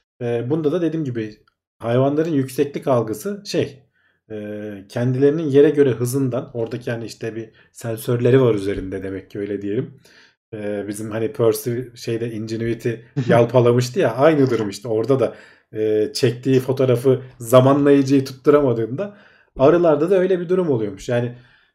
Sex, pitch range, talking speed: male, 115-140 Hz, 125 wpm